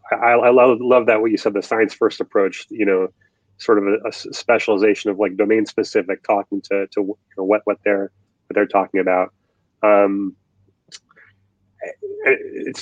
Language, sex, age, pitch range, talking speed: English, male, 30-49, 100-135 Hz, 175 wpm